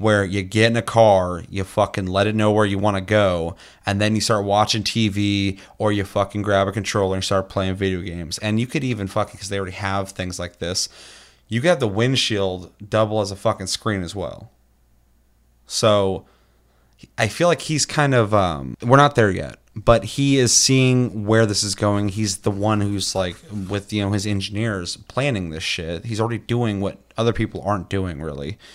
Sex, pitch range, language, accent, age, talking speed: male, 95-110 Hz, English, American, 30-49, 205 wpm